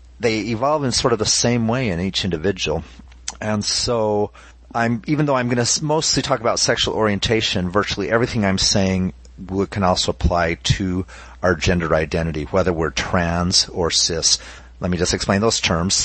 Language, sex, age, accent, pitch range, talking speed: English, male, 30-49, American, 85-115 Hz, 170 wpm